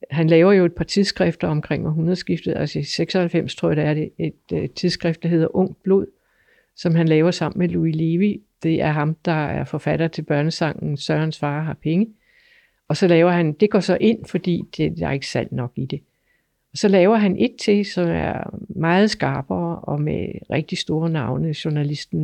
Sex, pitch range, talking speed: female, 155-195 Hz, 195 wpm